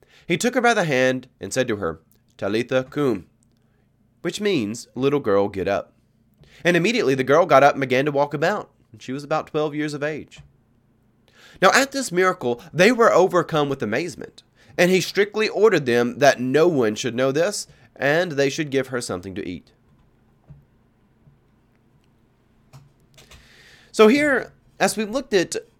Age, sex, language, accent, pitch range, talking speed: 30-49, male, English, American, 120-165 Hz, 165 wpm